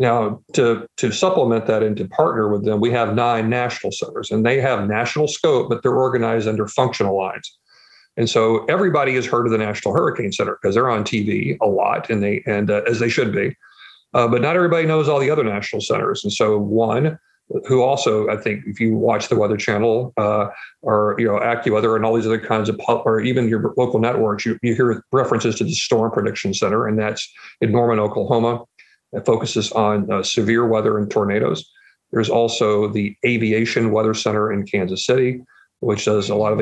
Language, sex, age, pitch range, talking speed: English, male, 50-69, 105-115 Hz, 210 wpm